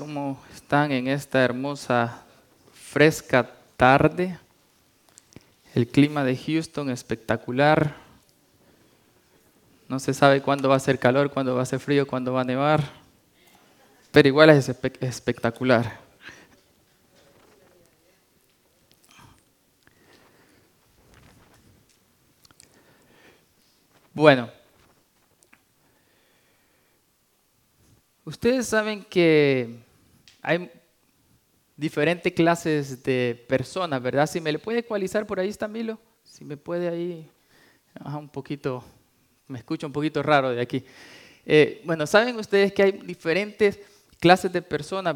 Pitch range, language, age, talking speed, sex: 130-165 Hz, English, 20-39, 100 wpm, male